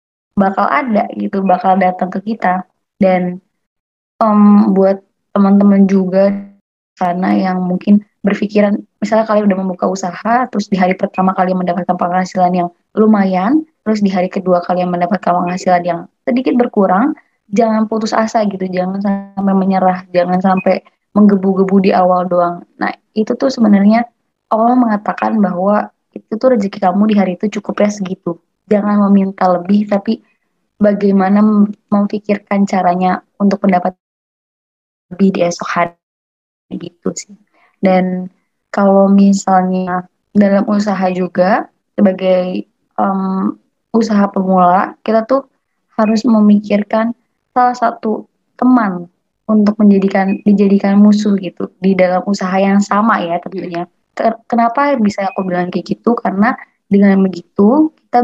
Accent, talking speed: native, 130 wpm